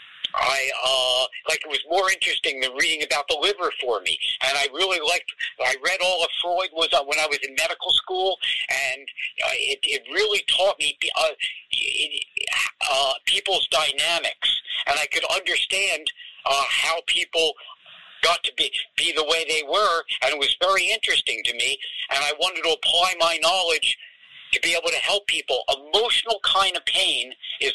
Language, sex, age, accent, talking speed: English, male, 50-69, American, 175 wpm